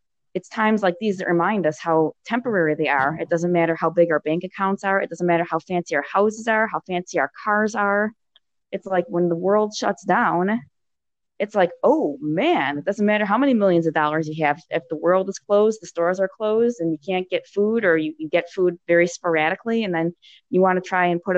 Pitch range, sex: 170-195 Hz, female